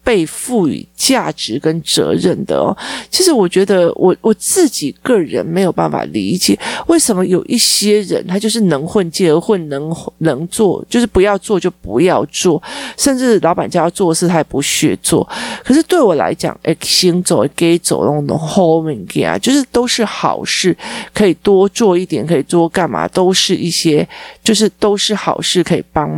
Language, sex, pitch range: Chinese, male, 160-210 Hz